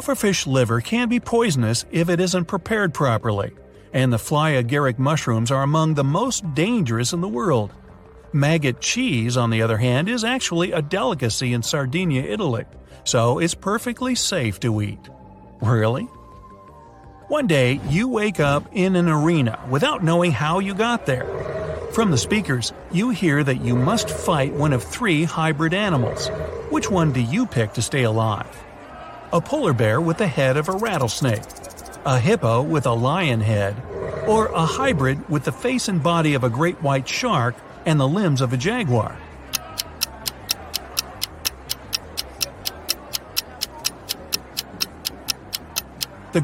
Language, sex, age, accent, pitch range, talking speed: English, male, 50-69, American, 115-175 Hz, 145 wpm